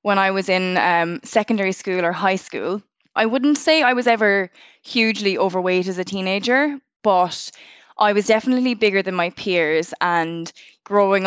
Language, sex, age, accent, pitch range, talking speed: English, female, 20-39, Irish, 180-210 Hz, 165 wpm